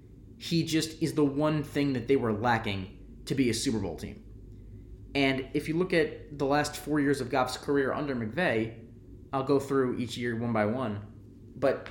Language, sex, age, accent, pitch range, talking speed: English, male, 20-39, American, 105-130 Hz, 195 wpm